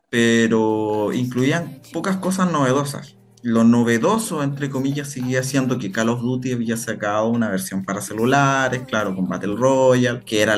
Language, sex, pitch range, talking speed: Spanish, male, 110-145 Hz, 155 wpm